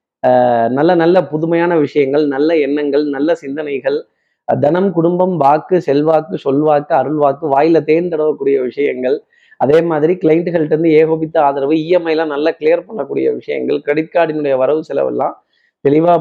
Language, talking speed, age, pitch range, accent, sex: Tamil, 130 wpm, 30-49, 140-175 Hz, native, male